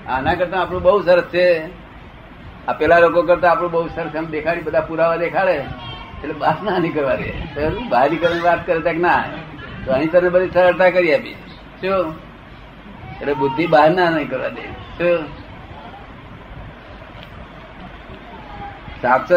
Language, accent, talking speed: Gujarati, native, 55 wpm